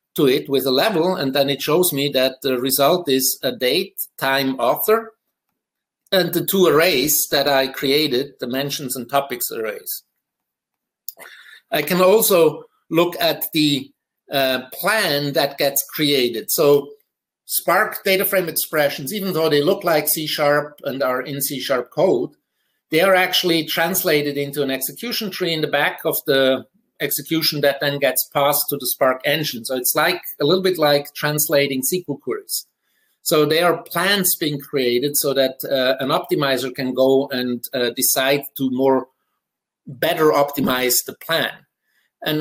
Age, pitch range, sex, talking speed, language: 60-79, 135-170 Hz, male, 155 wpm, English